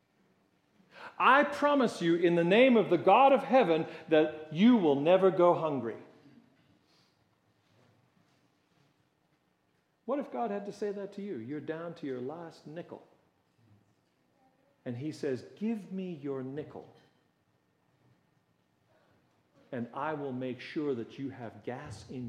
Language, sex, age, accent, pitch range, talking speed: English, male, 50-69, American, 135-195 Hz, 130 wpm